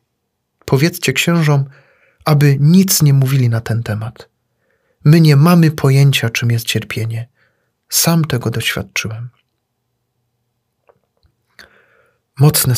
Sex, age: male, 40-59